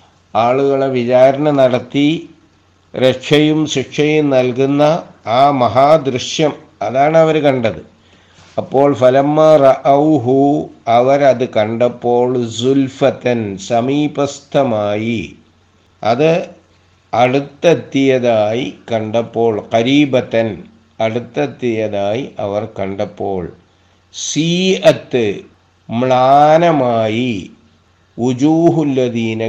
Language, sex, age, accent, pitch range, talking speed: Malayalam, male, 50-69, native, 110-140 Hz, 60 wpm